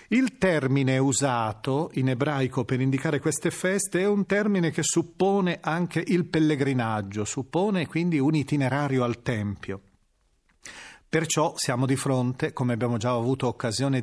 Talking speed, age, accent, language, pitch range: 135 wpm, 40-59, native, Italian, 120-155 Hz